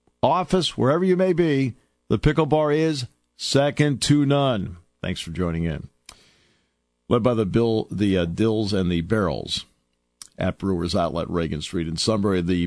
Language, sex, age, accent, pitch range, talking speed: English, male, 50-69, American, 105-160 Hz, 160 wpm